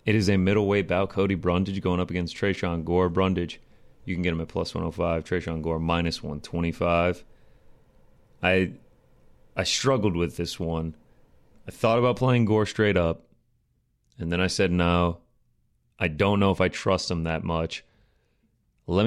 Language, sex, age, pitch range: English, male, 30-49, 85-100 Hz